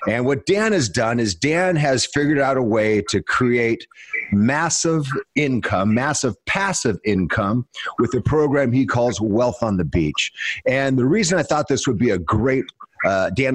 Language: English